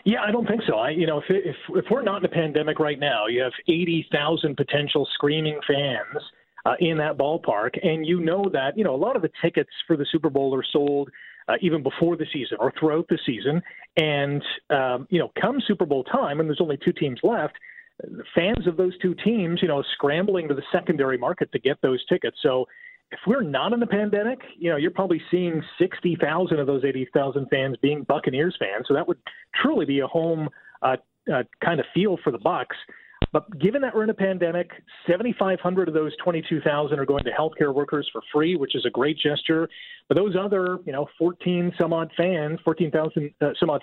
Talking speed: 215 wpm